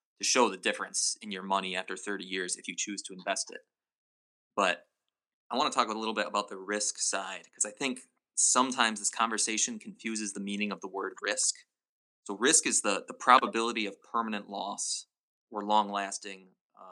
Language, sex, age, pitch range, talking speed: English, male, 20-39, 100-115 Hz, 185 wpm